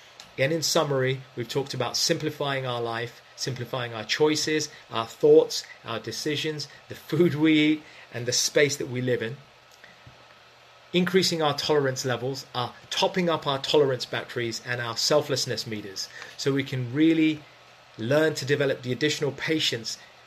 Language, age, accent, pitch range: English, 30-49, British, 120-150 Hz